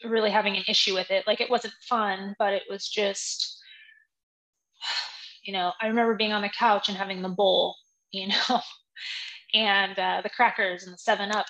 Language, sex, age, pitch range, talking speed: English, female, 20-39, 195-235 Hz, 185 wpm